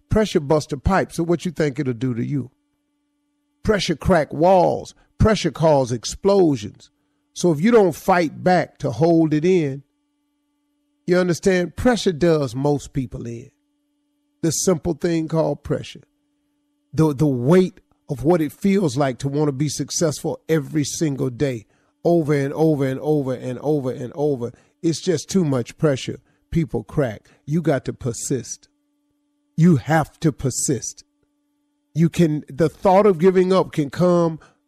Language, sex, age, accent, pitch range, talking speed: English, male, 40-59, American, 140-205 Hz, 150 wpm